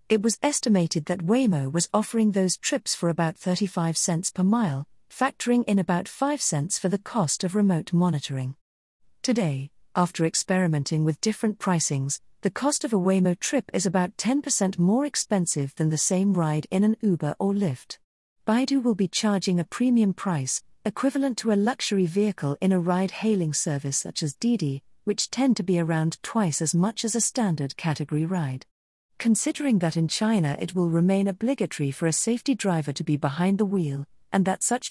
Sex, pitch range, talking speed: female, 160-215 Hz, 180 wpm